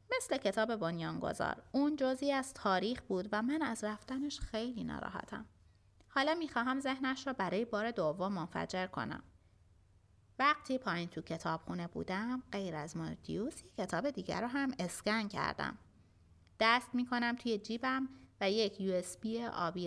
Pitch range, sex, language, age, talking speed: 175-235 Hz, female, Persian, 30-49, 140 wpm